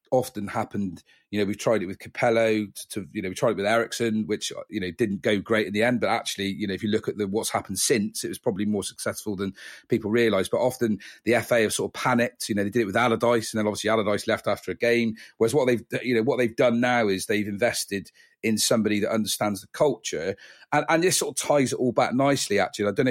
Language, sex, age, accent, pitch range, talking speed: English, male, 40-59, British, 105-120 Hz, 265 wpm